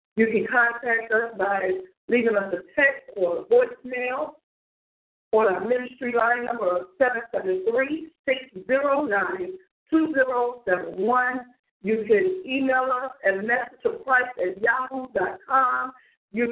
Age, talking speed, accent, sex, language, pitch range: 50-69, 100 wpm, American, female, English, 235-295 Hz